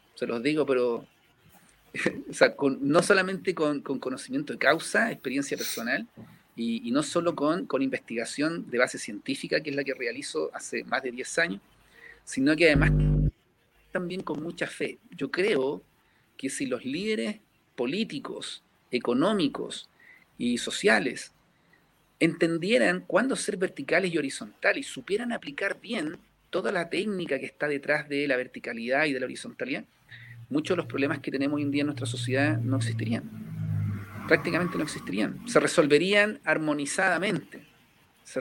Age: 40-59